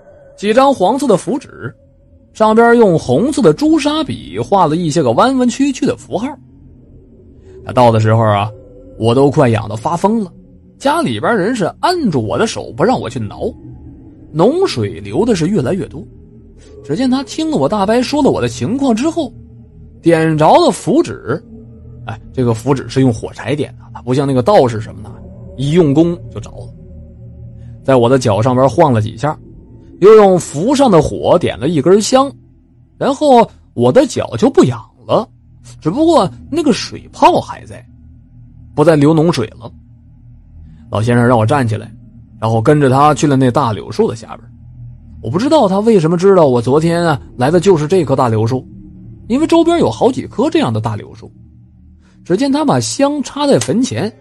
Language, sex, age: Chinese, male, 20-39